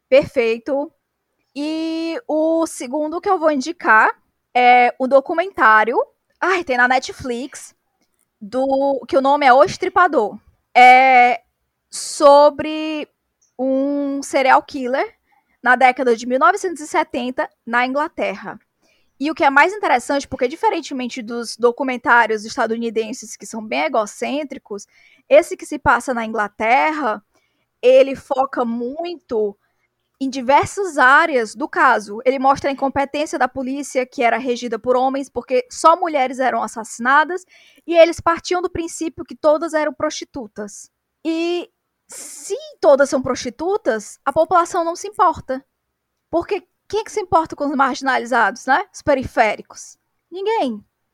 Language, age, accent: Portuguese, 10-29, Brazilian